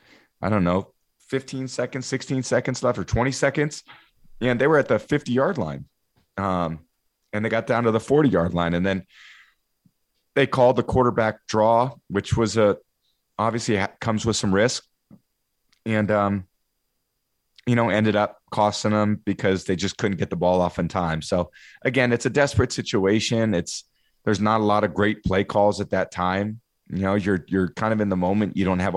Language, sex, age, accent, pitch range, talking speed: English, male, 30-49, American, 90-110 Hz, 190 wpm